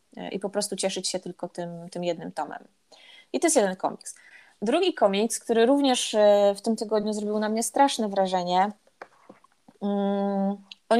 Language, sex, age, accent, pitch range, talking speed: Polish, female, 20-39, native, 195-235 Hz, 155 wpm